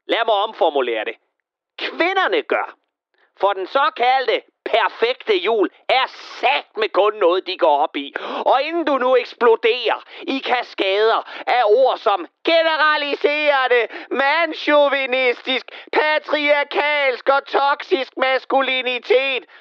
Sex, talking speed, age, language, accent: male, 110 wpm, 40-59, Danish, native